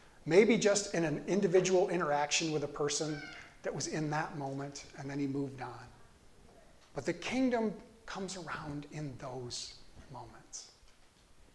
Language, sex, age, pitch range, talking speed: English, male, 40-59, 155-200 Hz, 140 wpm